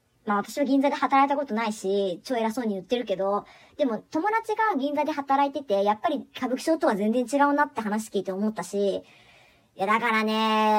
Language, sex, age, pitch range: Japanese, male, 40-59, 205-305 Hz